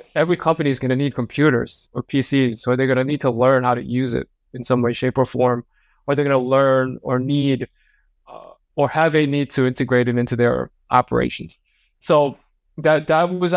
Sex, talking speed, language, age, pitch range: male, 210 wpm, English, 20-39, 120-145 Hz